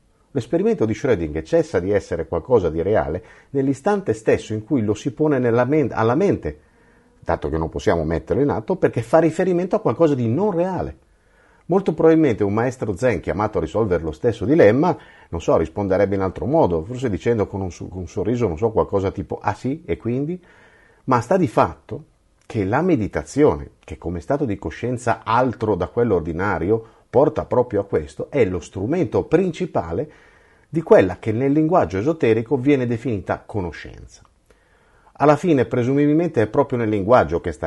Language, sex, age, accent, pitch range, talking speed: Italian, male, 50-69, native, 95-155 Hz, 170 wpm